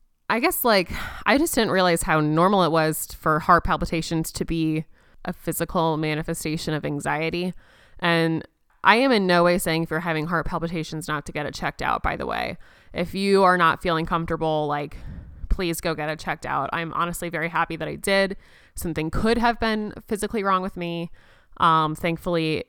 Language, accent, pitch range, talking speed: English, American, 160-185 Hz, 190 wpm